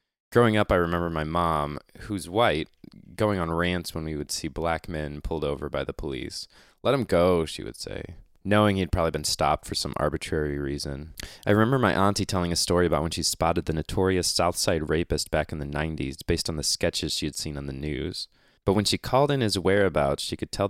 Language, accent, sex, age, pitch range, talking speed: English, American, male, 20-39, 80-95 Hz, 220 wpm